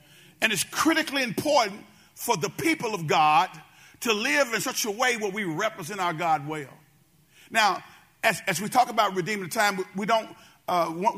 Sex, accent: male, American